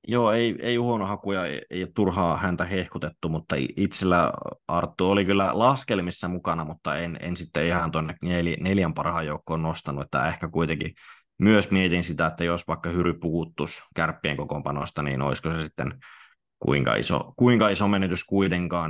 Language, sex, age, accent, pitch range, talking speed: Finnish, male, 20-39, native, 80-95 Hz, 160 wpm